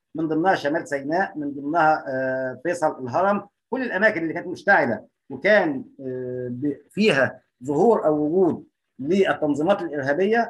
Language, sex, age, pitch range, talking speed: Arabic, male, 50-69, 155-215 Hz, 115 wpm